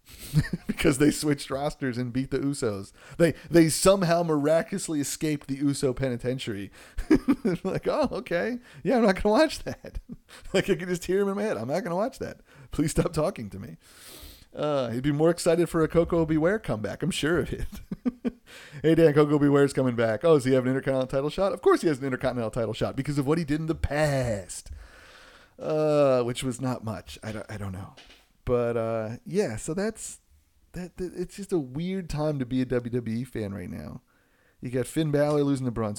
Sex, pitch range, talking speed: male, 115-160 Hz, 210 wpm